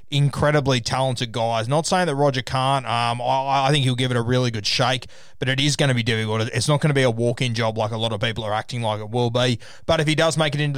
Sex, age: male, 20-39